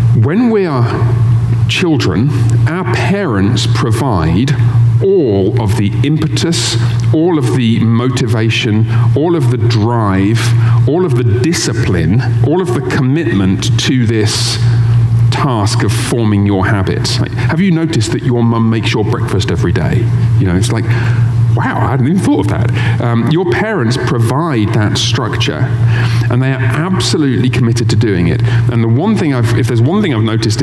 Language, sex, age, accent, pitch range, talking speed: English, male, 40-59, British, 115-125 Hz, 160 wpm